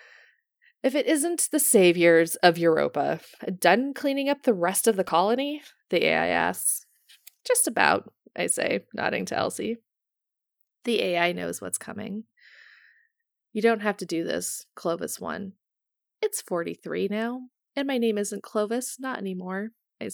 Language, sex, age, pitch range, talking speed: English, female, 20-39, 190-270 Hz, 145 wpm